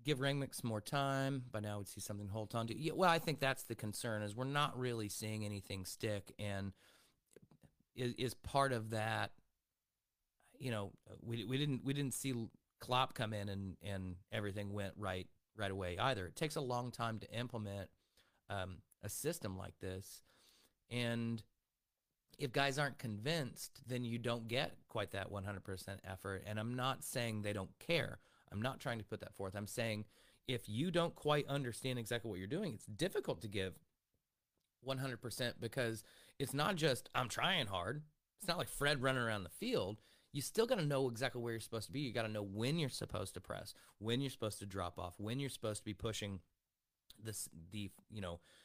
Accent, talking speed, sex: American, 195 wpm, male